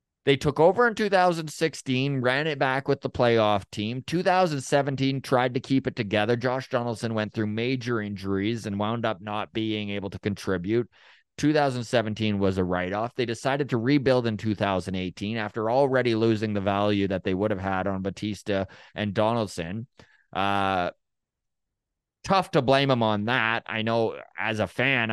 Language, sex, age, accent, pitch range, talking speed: English, male, 20-39, American, 105-130 Hz, 160 wpm